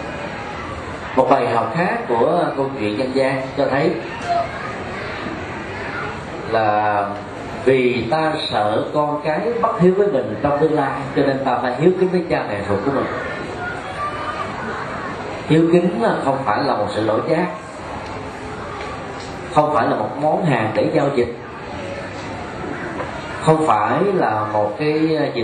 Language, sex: Vietnamese, male